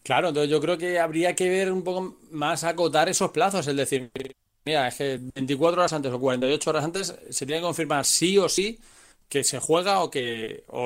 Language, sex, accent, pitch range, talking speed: Spanish, male, Spanish, 135-175 Hz, 215 wpm